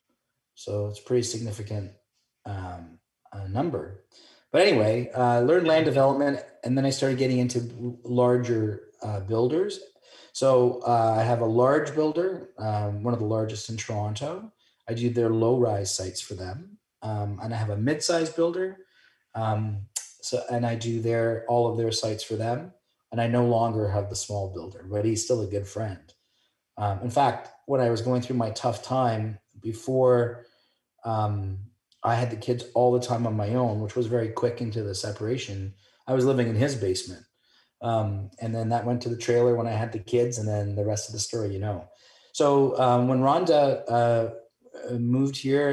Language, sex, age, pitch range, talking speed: English, male, 30-49, 110-125 Hz, 190 wpm